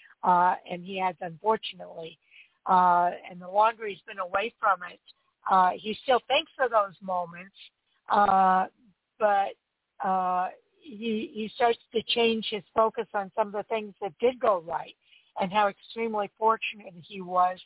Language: English